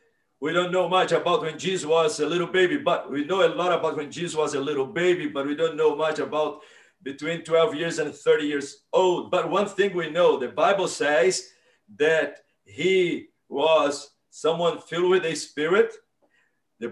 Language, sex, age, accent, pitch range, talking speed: English, male, 50-69, Brazilian, 150-205 Hz, 190 wpm